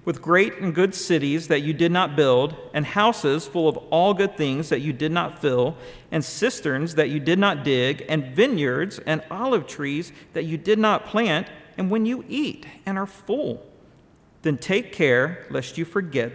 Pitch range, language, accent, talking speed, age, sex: 145-190 Hz, English, American, 190 wpm, 50-69, male